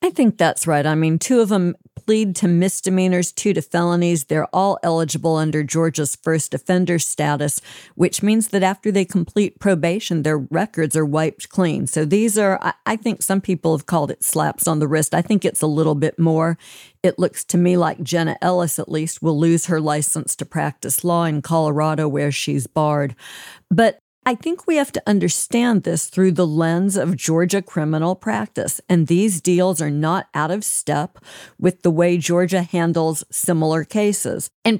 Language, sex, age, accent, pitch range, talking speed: English, female, 50-69, American, 155-190 Hz, 185 wpm